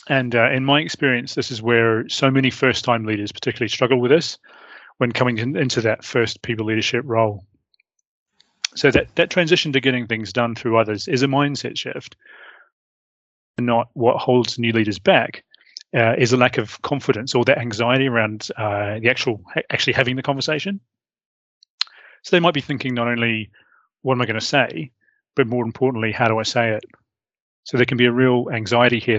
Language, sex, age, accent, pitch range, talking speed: English, male, 30-49, British, 115-135 Hz, 190 wpm